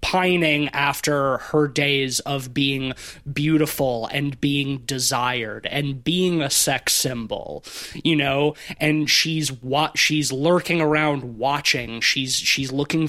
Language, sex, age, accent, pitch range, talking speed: English, male, 20-39, American, 135-155 Hz, 125 wpm